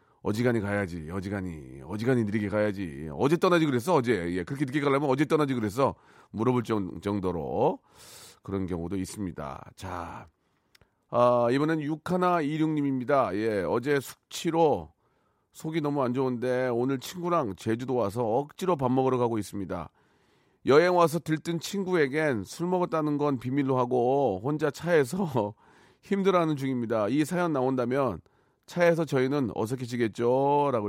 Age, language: 40-59, Korean